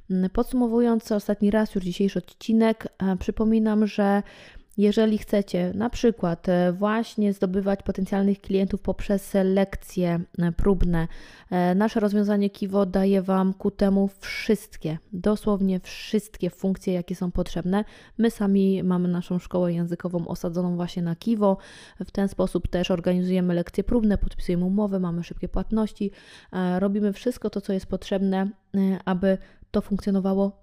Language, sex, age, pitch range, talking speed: Polish, female, 20-39, 185-210 Hz, 125 wpm